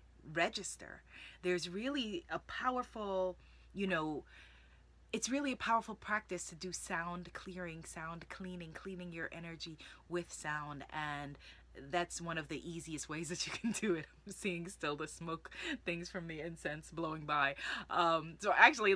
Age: 20-39